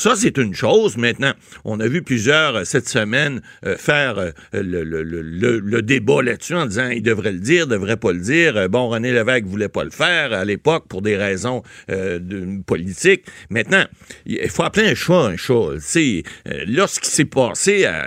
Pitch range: 100-135 Hz